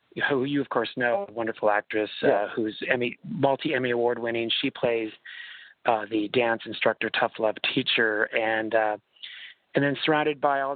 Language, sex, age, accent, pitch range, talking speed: English, male, 30-49, American, 110-135 Hz, 175 wpm